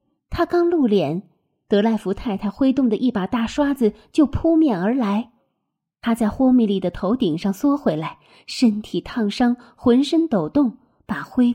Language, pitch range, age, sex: Chinese, 195-265 Hz, 20-39, female